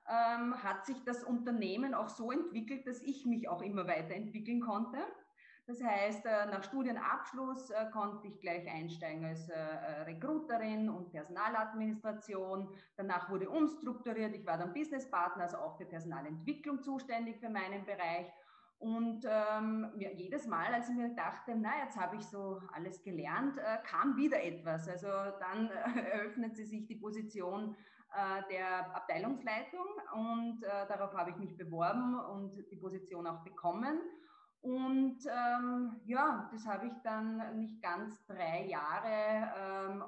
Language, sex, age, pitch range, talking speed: German, female, 20-39, 185-245 Hz, 135 wpm